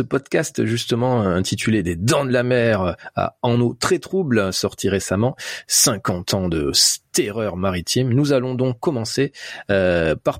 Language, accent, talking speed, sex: French, French, 165 wpm, male